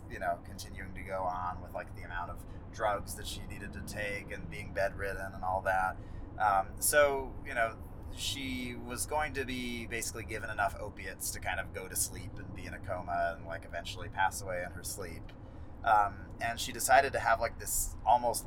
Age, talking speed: 30-49, 210 wpm